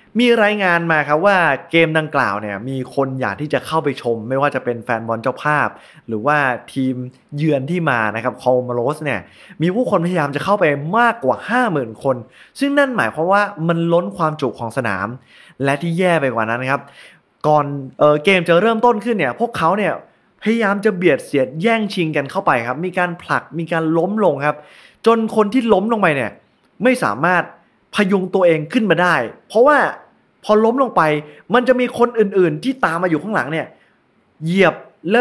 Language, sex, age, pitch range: Thai, male, 20-39, 135-200 Hz